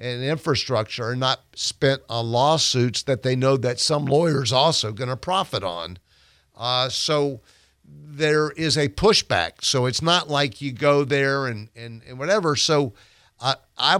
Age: 50-69